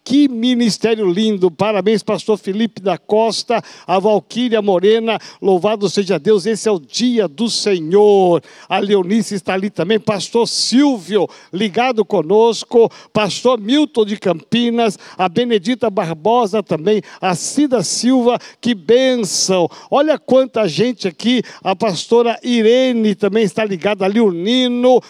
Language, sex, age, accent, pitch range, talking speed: Portuguese, male, 60-79, Brazilian, 195-230 Hz, 130 wpm